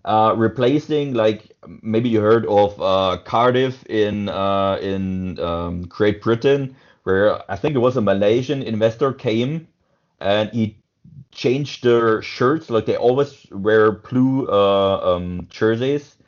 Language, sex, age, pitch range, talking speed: Persian, male, 30-49, 105-130 Hz, 135 wpm